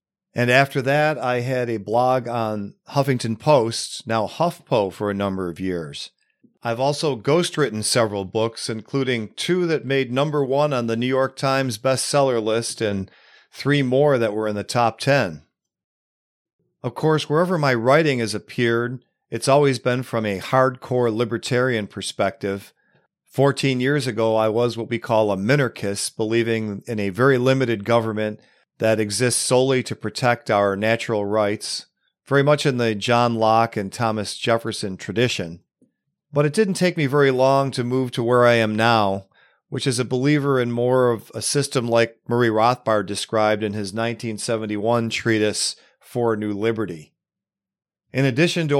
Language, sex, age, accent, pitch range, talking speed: English, male, 40-59, American, 110-135 Hz, 160 wpm